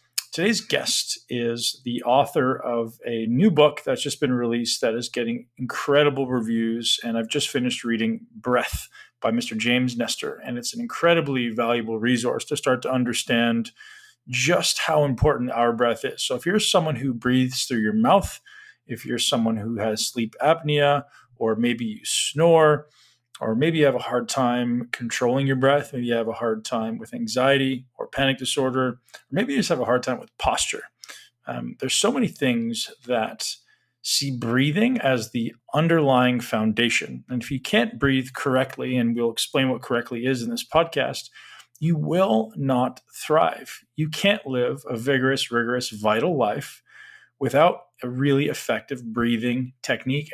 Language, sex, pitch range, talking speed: English, male, 120-145 Hz, 165 wpm